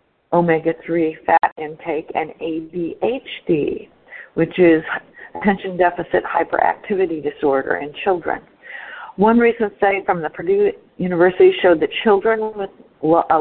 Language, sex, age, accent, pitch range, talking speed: English, female, 50-69, American, 170-225 Hz, 110 wpm